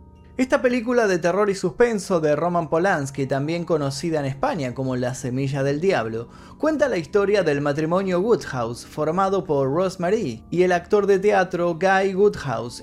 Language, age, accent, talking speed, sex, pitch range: Spanish, 20-39, Argentinian, 160 wpm, male, 130-190 Hz